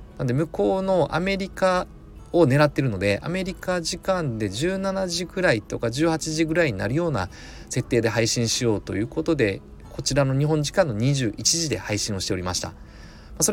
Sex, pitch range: male, 100-165 Hz